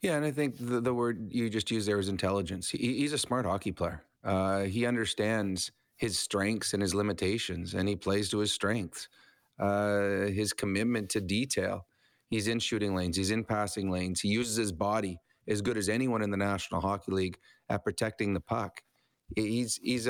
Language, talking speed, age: English, 195 wpm, 30-49